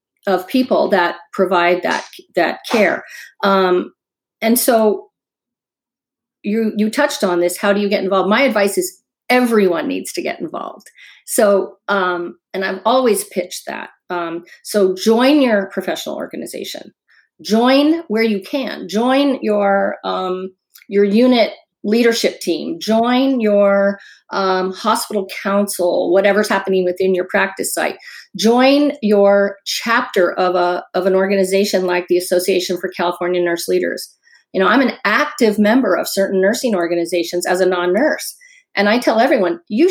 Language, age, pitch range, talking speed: English, 40-59, 185-245 Hz, 145 wpm